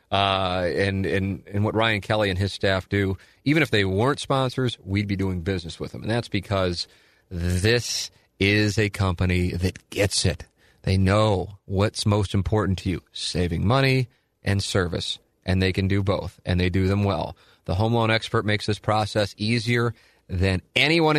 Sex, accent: male, American